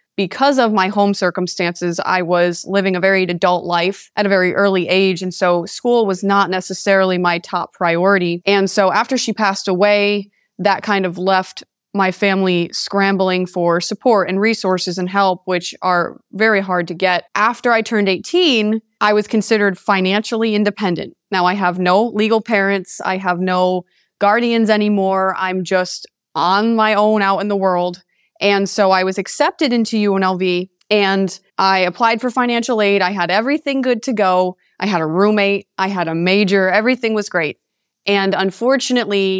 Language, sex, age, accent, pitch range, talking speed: English, female, 20-39, American, 185-215 Hz, 170 wpm